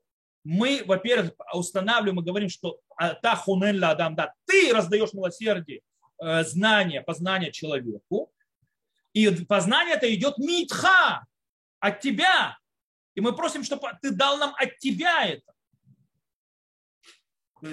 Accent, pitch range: native, 175-270 Hz